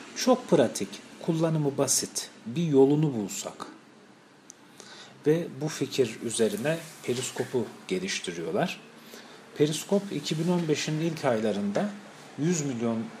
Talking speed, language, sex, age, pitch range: 85 wpm, Turkish, male, 40-59, 115-165 Hz